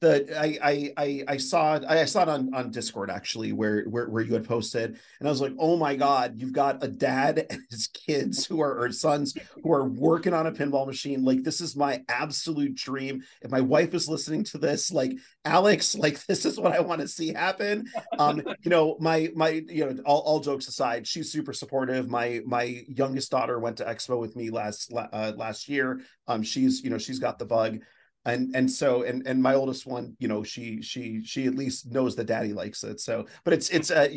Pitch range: 115-145 Hz